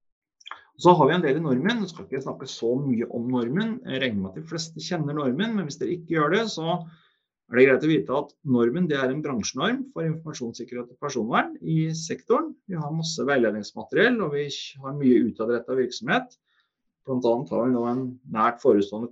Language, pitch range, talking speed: English, 125-185 Hz, 220 wpm